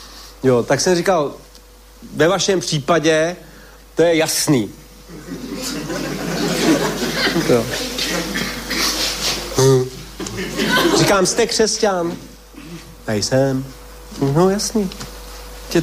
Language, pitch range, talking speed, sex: Slovak, 140-205 Hz, 70 wpm, male